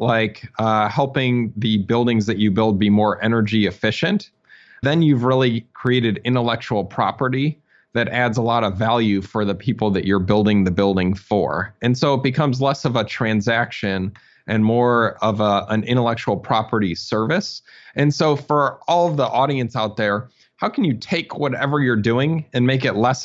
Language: English